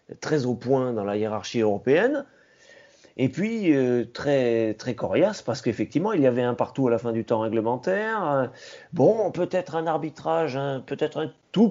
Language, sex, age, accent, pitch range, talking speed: French, male, 30-49, French, 125-150 Hz, 175 wpm